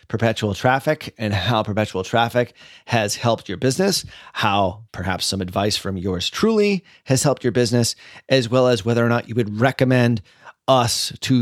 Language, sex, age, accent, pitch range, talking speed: English, male, 30-49, American, 105-130 Hz, 170 wpm